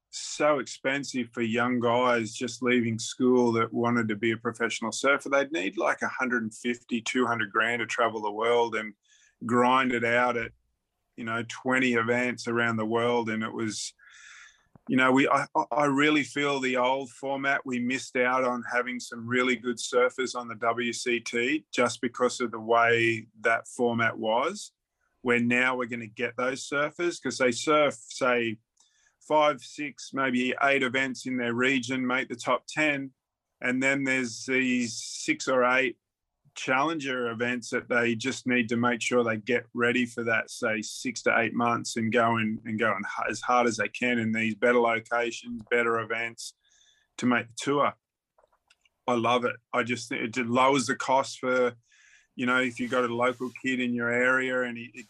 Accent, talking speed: Australian, 180 wpm